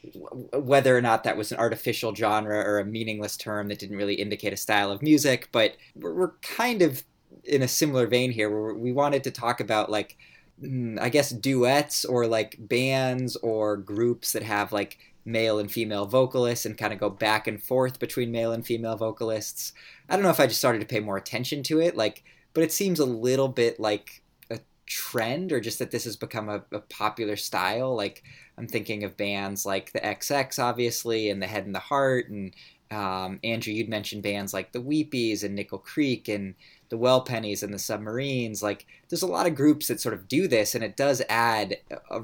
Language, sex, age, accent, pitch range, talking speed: English, male, 20-39, American, 105-125 Hz, 205 wpm